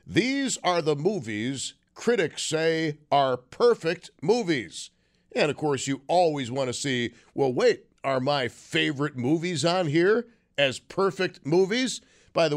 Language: English